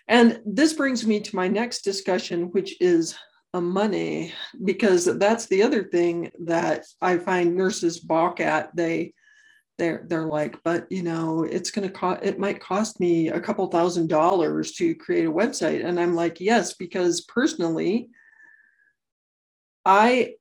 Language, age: English, 50-69